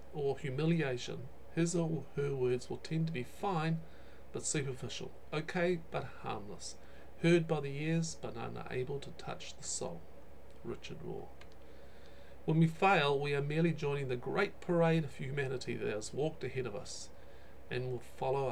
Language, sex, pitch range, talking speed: English, male, 125-165 Hz, 160 wpm